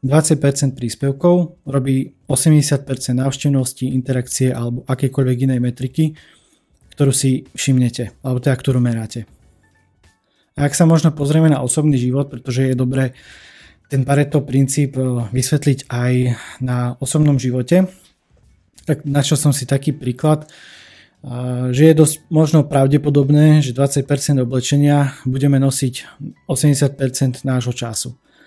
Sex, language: male, Slovak